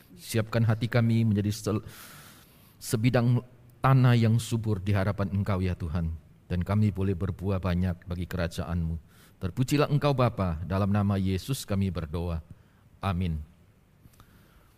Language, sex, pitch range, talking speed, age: Indonesian, male, 100-120 Hz, 120 wpm, 40-59